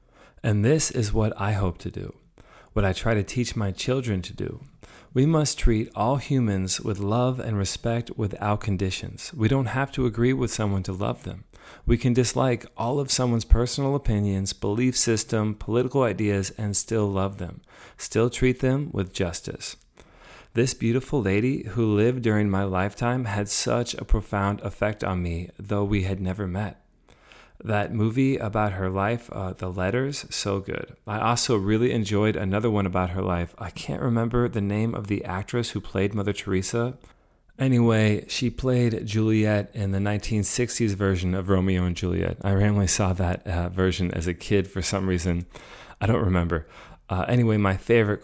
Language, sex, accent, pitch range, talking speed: English, male, American, 95-120 Hz, 175 wpm